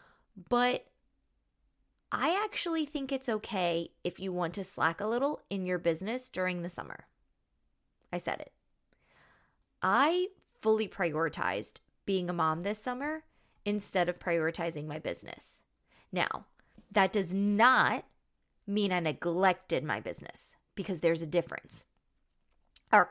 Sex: female